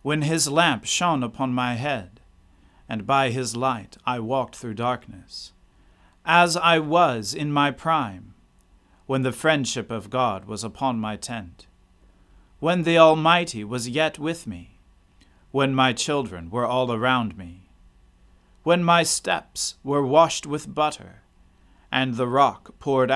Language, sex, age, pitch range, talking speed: English, male, 40-59, 105-150 Hz, 145 wpm